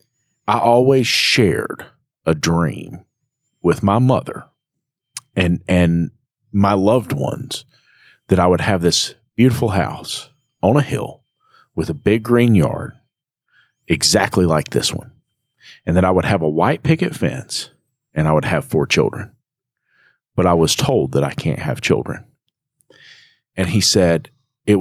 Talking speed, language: 145 wpm, English